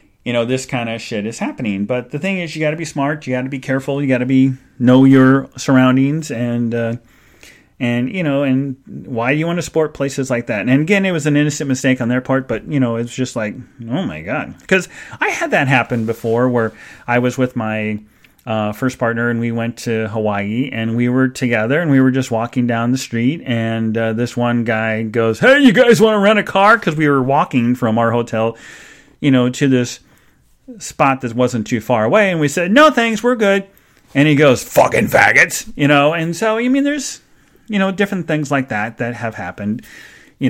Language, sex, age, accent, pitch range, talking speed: English, male, 30-49, American, 115-145 Hz, 230 wpm